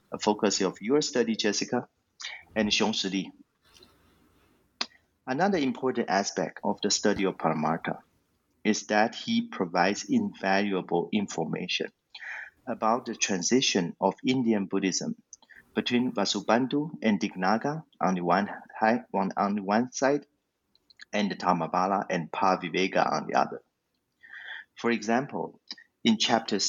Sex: male